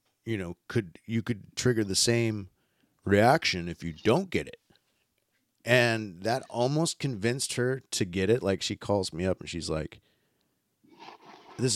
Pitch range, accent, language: 95-115 Hz, American, English